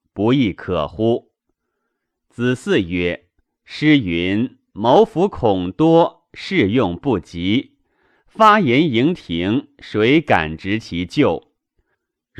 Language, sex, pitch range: Chinese, male, 100-160 Hz